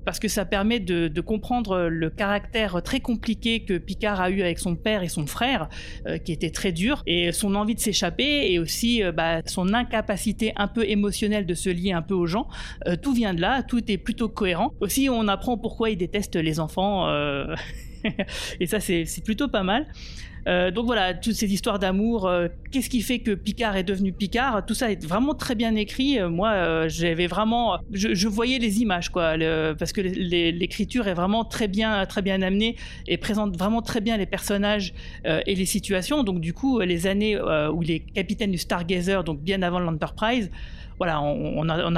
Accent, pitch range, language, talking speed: French, 175-220 Hz, French, 205 wpm